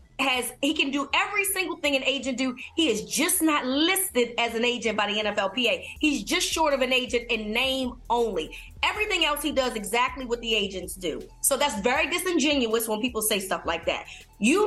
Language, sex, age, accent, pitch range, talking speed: English, female, 20-39, American, 230-300 Hz, 205 wpm